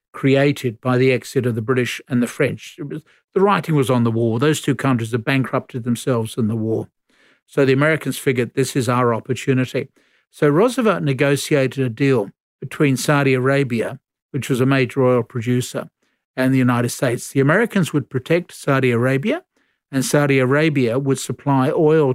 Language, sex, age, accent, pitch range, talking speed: English, male, 50-69, Australian, 125-145 Hz, 170 wpm